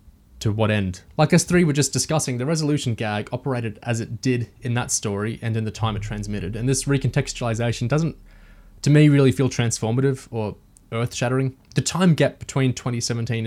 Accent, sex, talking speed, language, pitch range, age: Australian, male, 185 wpm, English, 105-130 Hz, 20-39